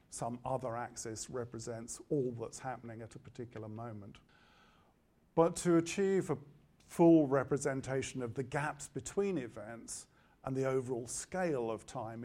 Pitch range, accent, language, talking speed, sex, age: 120-140 Hz, British, English, 135 wpm, male, 50-69